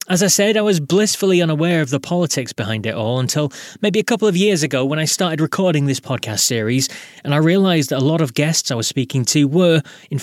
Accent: British